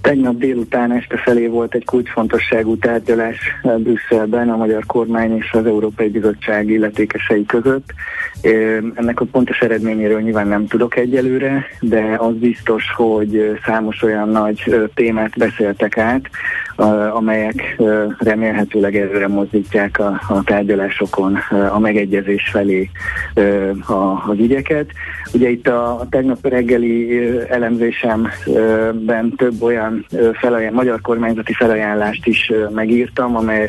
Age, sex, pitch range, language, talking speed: 30-49, male, 110-120 Hz, Hungarian, 110 wpm